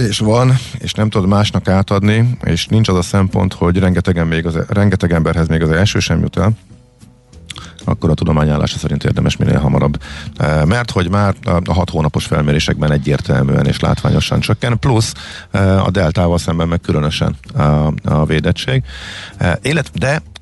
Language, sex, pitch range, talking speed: Hungarian, male, 80-105 Hz, 150 wpm